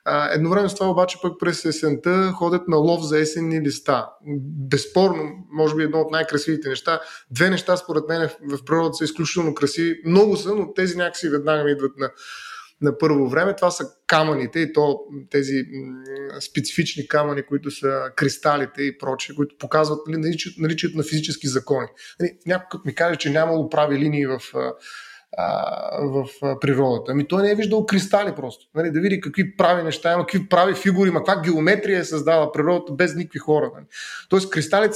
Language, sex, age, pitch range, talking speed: Bulgarian, male, 20-39, 145-180 Hz, 175 wpm